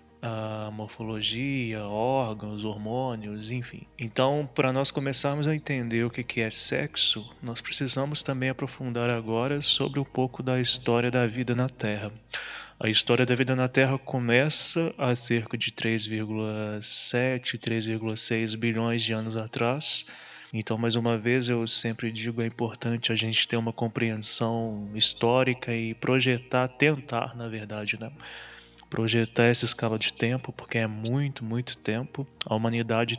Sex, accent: male, Brazilian